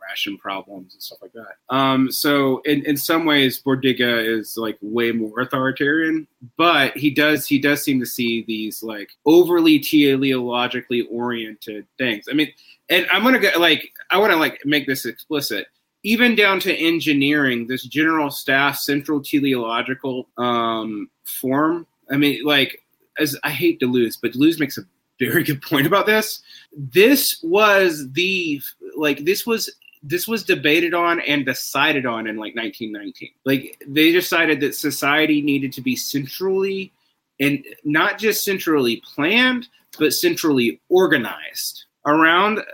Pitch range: 130-180 Hz